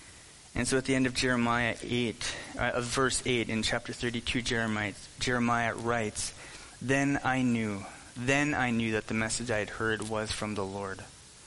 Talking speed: 175 wpm